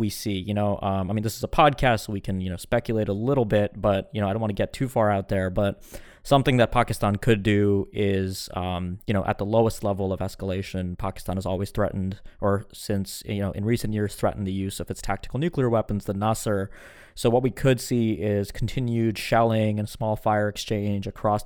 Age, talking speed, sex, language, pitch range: 20-39, 230 wpm, male, English, 100-115 Hz